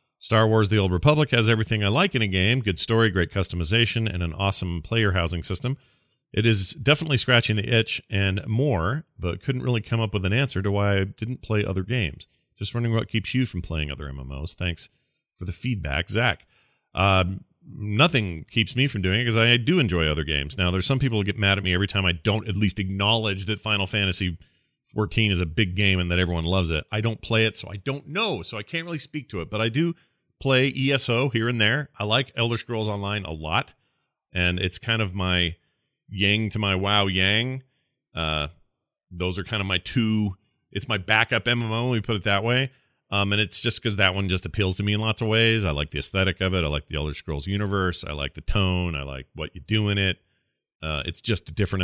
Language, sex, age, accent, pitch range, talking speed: English, male, 40-59, American, 90-115 Hz, 230 wpm